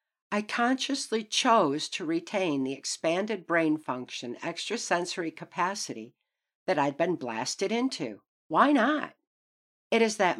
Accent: American